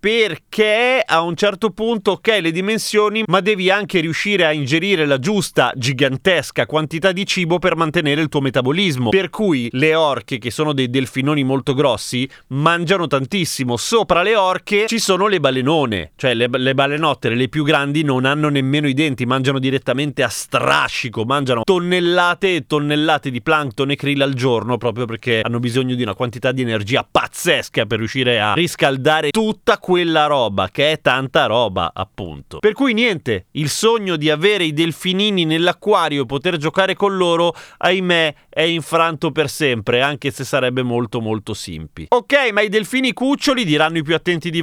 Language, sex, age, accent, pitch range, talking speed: Italian, male, 30-49, native, 125-185 Hz, 175 wpm